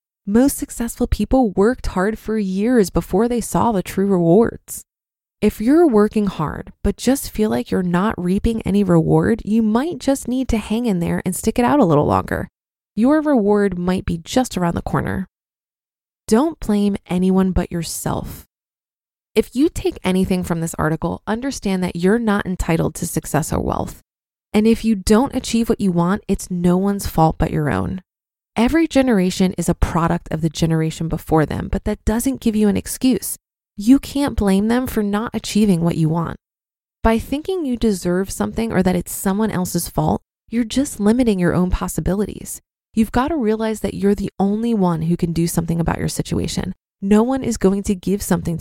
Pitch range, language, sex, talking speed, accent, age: 180-230 Hz, English, female, 190 wpm, American, 20-39